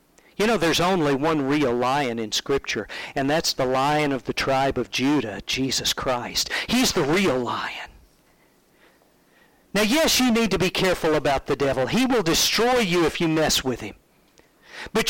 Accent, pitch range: American, 150-245 Hz